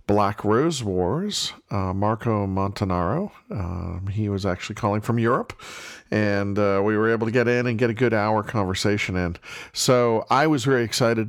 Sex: male